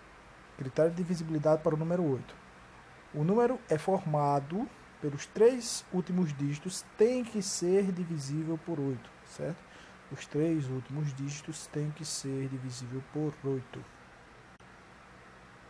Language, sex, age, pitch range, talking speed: Portuguese, male, 20-39, 135-190 Hz, 120 wpm